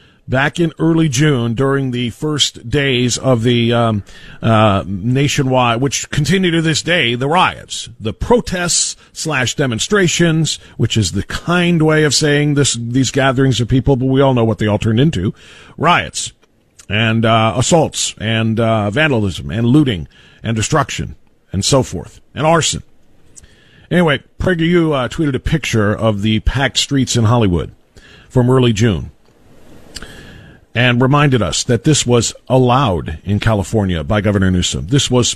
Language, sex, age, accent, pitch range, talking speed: English, male, 50-69, American, 110-150 Hz, 155 wpm